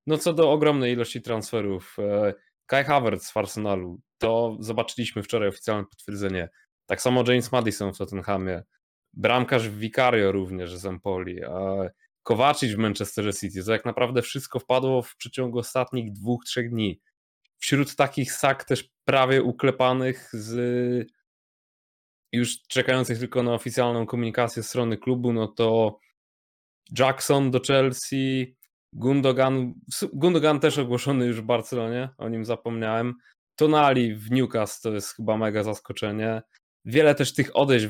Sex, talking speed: male, 135 wpm